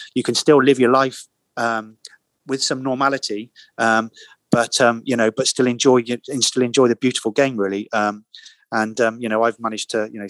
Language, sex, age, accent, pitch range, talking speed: English, male, 20-39, British, 105-115 Hz, 205 wpm